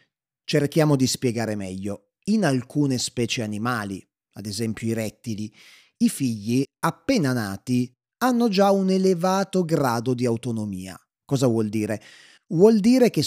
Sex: male